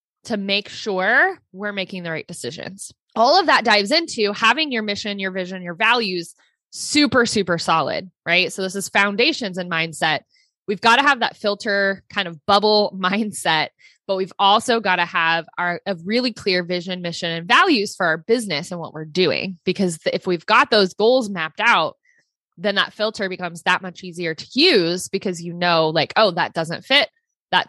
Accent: American